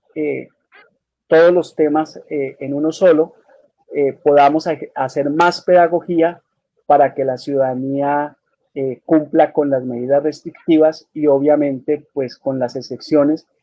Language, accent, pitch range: Spanish, Colombian, 140-160 Hz